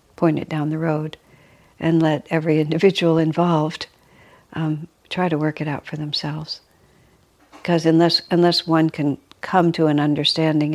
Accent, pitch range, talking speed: American, 150-170 Hz, 150 wpm